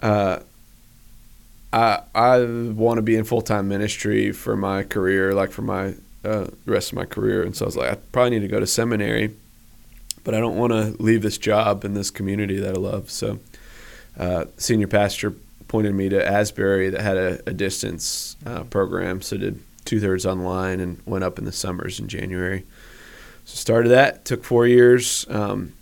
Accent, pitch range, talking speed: American, 95-115 Hz, 195 wpm